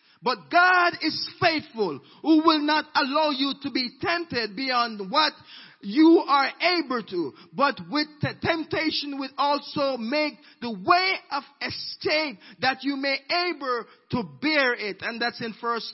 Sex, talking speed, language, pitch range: male, 150 wpm, English, 200-285 Hz